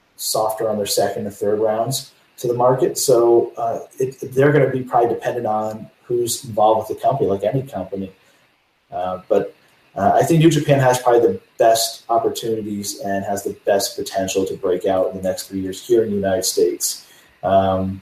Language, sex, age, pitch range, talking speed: English, male, 30-49, 95-135 Hz, 195 wpm